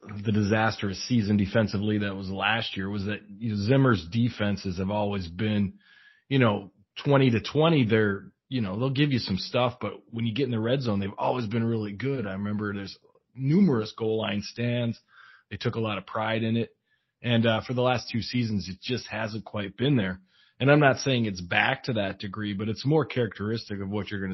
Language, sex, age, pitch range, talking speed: English, male, 30-49, 100-120 Hz, 220 wpm